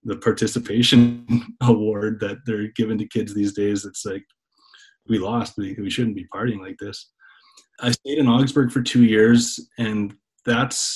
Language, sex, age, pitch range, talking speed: English, male, 20-39, 100-115 Hz, 165 wpm